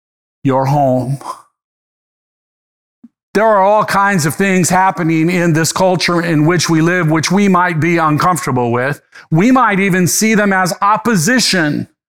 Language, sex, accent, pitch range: English, male, American, 160-200 Hz